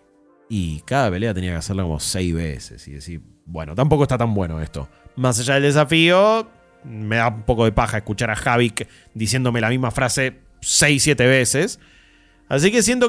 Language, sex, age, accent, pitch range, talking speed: Spanish, male, 20-39, Argentinian, 110-160 Hz, 185 wpm